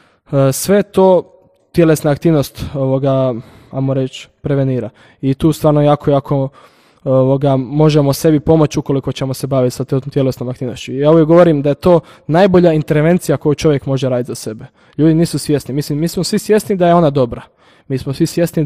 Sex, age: male, 20-39